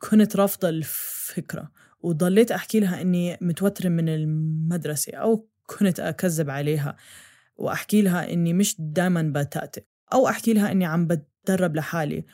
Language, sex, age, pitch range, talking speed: Arabic, female, 20-39, 155-195 Hz, 130 wpm